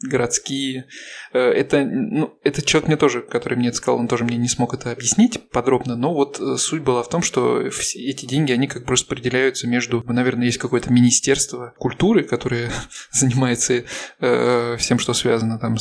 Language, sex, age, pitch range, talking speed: Russian, male, 20-39, 125-140 Hz, 170 wpm